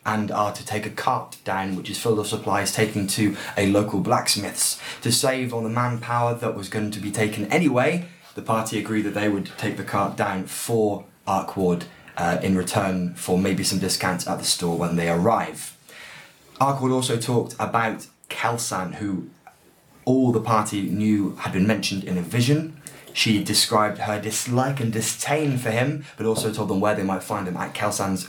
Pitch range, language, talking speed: 100-125 Hz, English, 190 wpm